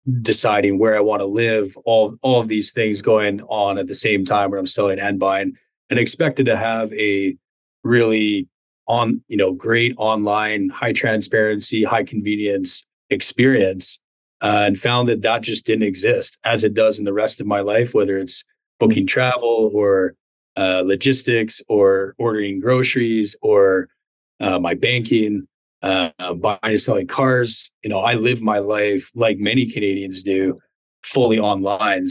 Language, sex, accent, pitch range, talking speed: English, male, American, 100-120 Hz, 160 wpm